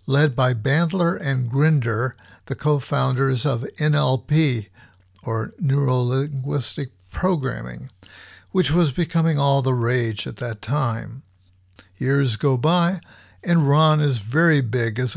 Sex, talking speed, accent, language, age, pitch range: male, 125 wpm, American, English, 60-79, 120-155 Hz